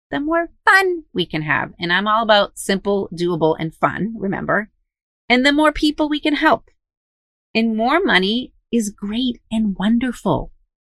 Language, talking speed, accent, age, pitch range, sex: English, 160 wpm, American, 30-49, 165-235 Hz, female